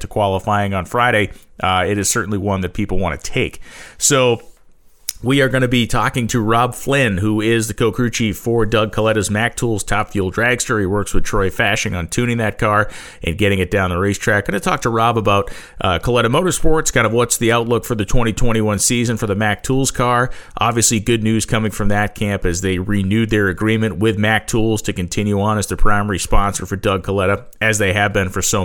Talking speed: 220 wpm